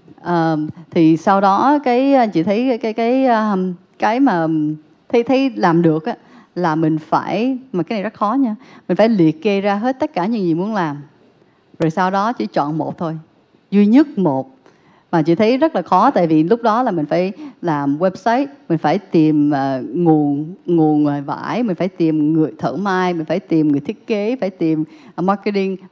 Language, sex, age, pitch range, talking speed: Vietnamese, female, 20-39, 165-225 Hz, 200 wpm